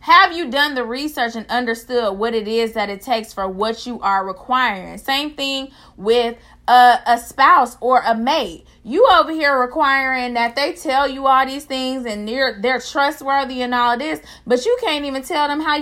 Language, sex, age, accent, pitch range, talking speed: English, female, 20-39, American, 215-275 Hz, 195 wpm